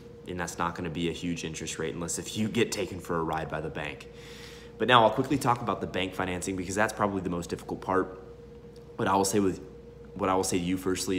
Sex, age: male, 30-49